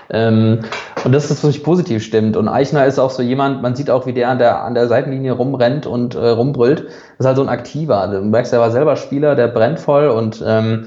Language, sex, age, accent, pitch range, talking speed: German, male, 20-39, German, 110-135 Hz, 250 wpm